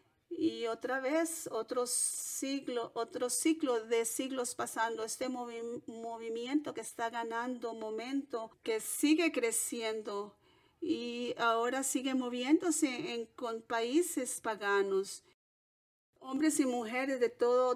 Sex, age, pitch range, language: female, 40-59, 220-280 Hz, English